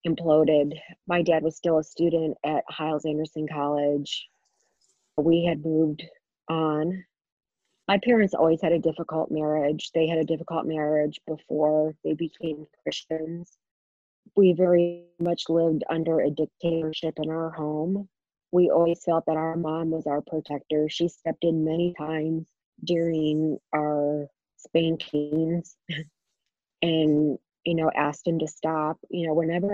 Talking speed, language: 135 wpm, English